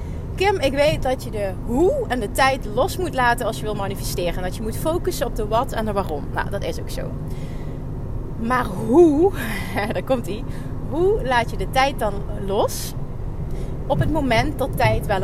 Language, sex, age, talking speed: Dutch, female, 30-49, 195 wpm